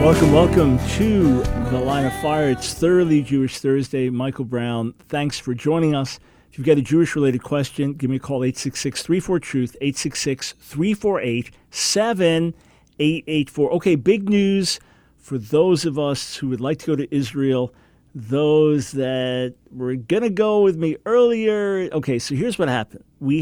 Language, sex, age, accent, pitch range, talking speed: English, male, 50-69, American, 125-160 Hz, 150 wpm